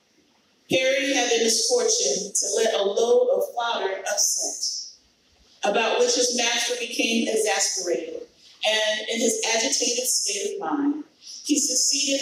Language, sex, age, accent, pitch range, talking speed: English, female, 40-59, American, 235-290 Hz, 130 wpm